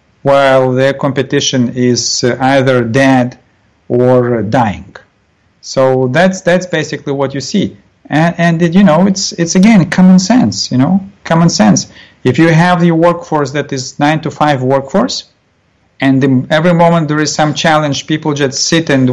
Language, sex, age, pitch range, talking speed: English, male, 50-69, 140-180 Hz, 155 wpm